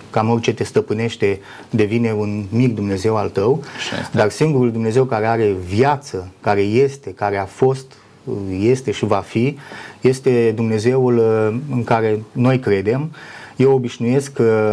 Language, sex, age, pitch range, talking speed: Romanian, male, 30-49, 105-125 Hz, 135 wpm